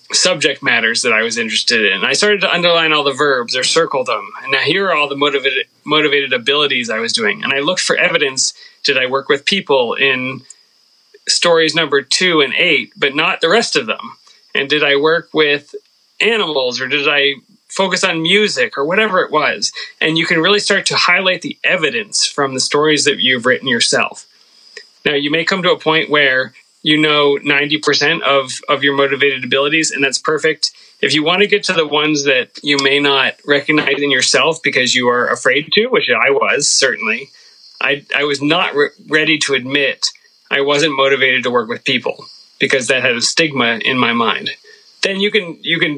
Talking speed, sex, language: 200 wpm, male, English